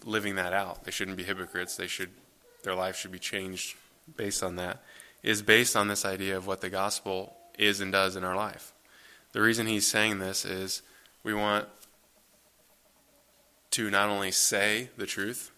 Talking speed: 175 wpm